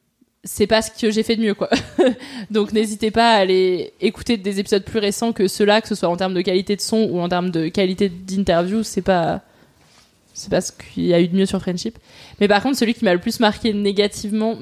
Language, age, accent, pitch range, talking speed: French, 20-39, French, 190-225 Hz, 240 wpm